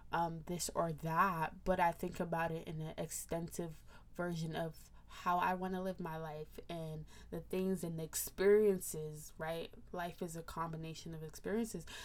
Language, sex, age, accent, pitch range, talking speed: English, female, 20-39, American, 160-190 Hz, 170 wpm